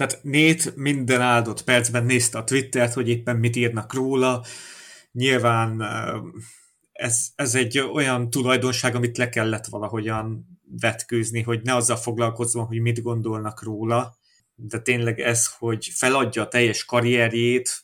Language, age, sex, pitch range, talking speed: Hungarian, 30-49, male, 115-130 Hz, 135 wpm